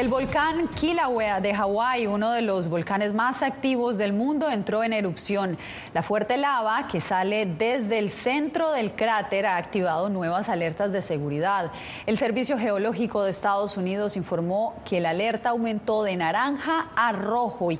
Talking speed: 160 wpm